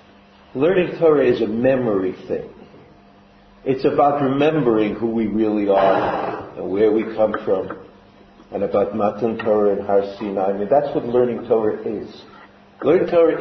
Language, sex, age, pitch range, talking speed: English, male, 60-79, 100-130 Hz, 150 wpm